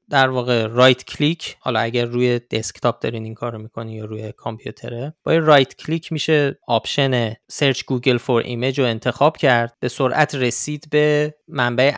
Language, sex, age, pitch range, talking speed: Persian, male, 20-39, 115-150 Hz, 160 wpm